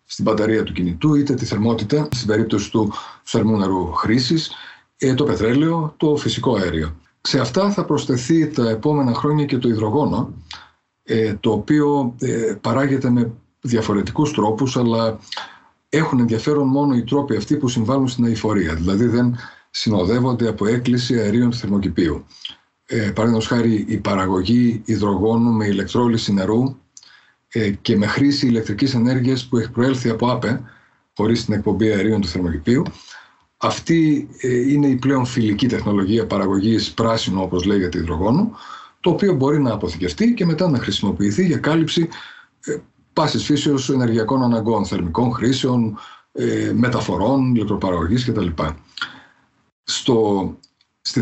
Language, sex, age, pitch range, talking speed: Greek, male, 50-69, 105-135 Hz, 130 wpm